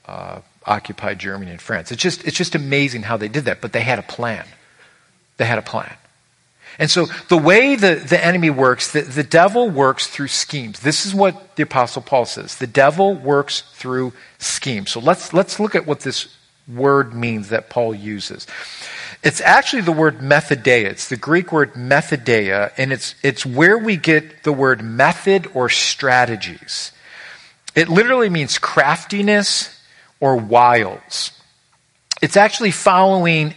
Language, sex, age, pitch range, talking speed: English, male, 50-69, 130-175 Hz, 165 wpm